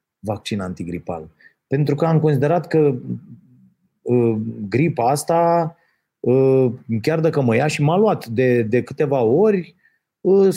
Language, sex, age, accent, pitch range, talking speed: Romanian, male, 30-49, native, 135-220 Hz, 130 wpm